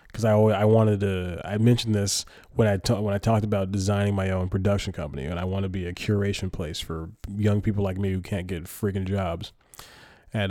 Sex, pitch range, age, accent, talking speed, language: male, 95-115 Hz, 20-39, American, 225 wpm, English